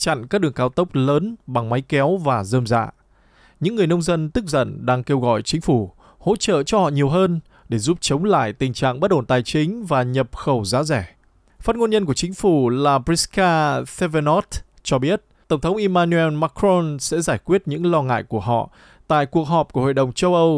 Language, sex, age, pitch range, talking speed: Vietnamese, male, 20-39, 130-180 Hz, 220 wpm